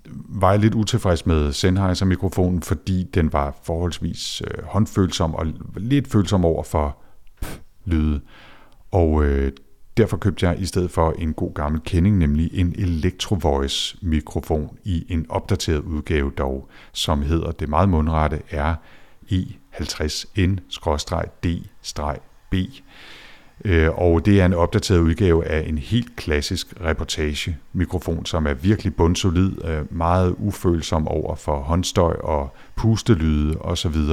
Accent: native